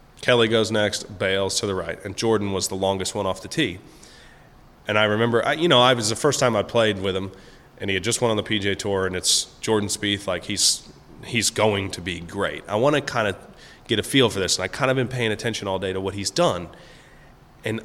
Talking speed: 255 wpm